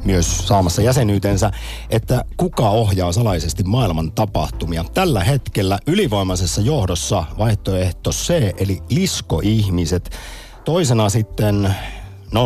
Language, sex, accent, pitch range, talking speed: Finnish, male, native, 90-115 Hz, 95 wpm